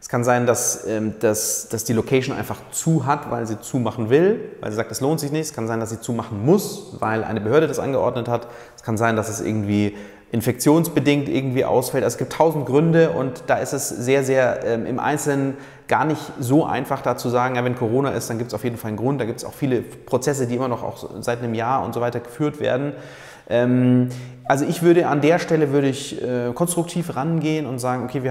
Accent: German